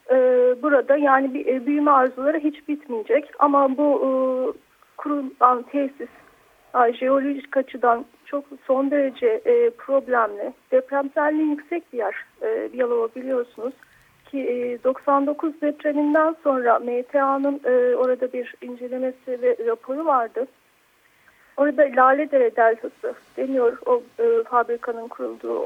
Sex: female